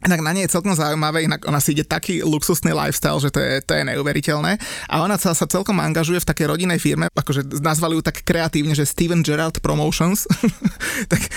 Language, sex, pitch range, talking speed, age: Slovak, male, 150-180 Hz, 200 wpm, 20-39